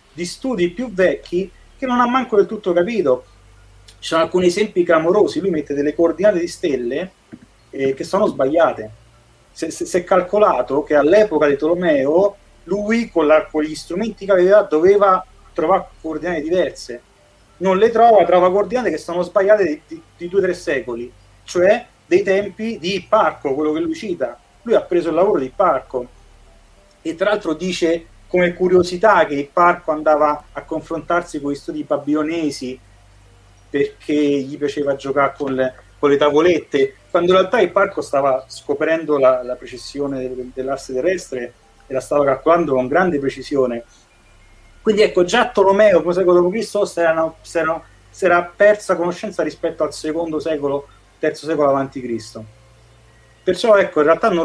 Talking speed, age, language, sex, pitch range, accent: 160 wpm, 40-59, Italian, male, 130-185 Hz, native